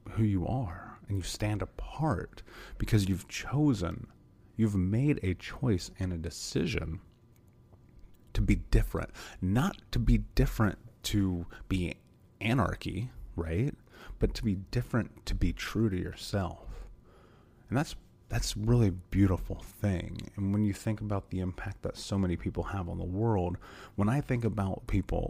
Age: 30-49